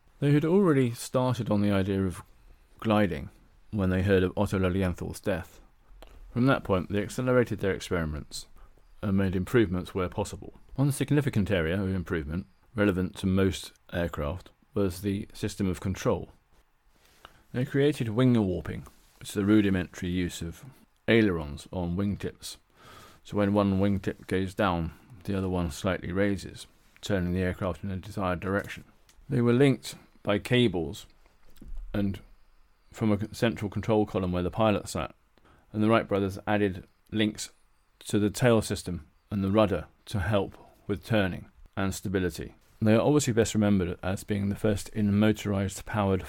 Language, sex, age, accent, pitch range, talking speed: English, male, 30-49, British, 90-110 Hz, 155 wpm